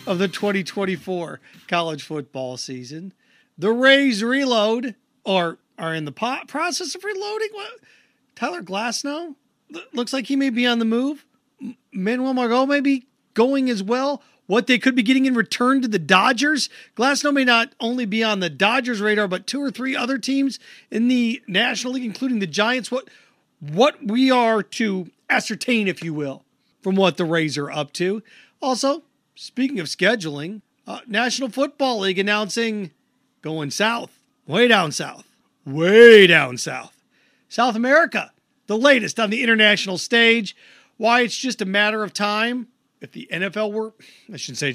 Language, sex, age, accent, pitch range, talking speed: English, male, 40-59, American, 195-255 Hz, 165 wpm